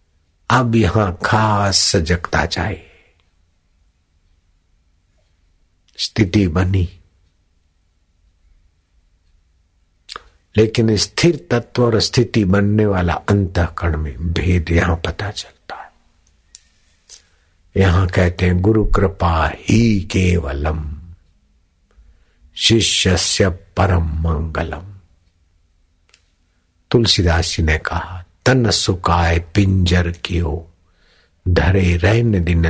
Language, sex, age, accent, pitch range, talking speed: Hindi, male, 60-79, native, 80-95 Hz, 80 wpm